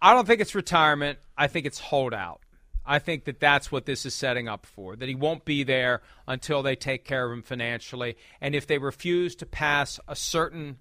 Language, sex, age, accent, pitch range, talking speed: English, male, 40-59, American, 120-155 Hz, 215 wpm